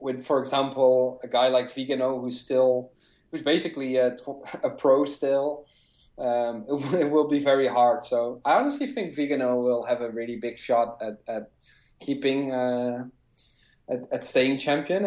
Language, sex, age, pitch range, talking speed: English, male, 20-39, 125-145 Hz, 165 wpm